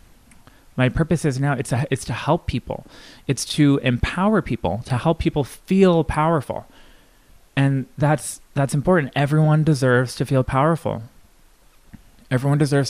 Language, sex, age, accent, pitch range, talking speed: English, male, 20-39, American, 120-150 Hz, 140 wpm